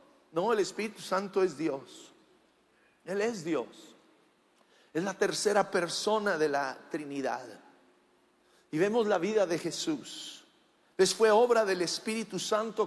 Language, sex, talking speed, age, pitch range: English, male, 130 wpm, 50-69, 165-210 Hz